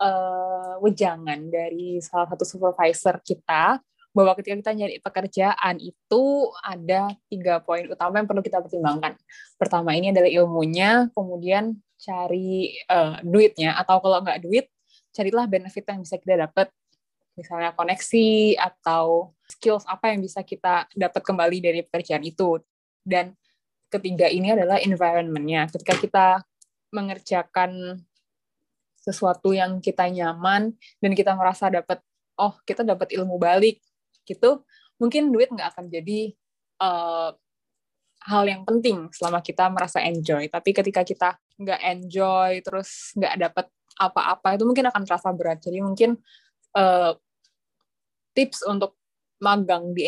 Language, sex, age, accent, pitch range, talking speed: Indonesian, female, 10-29, native, 175-205 Hz, 130 wpm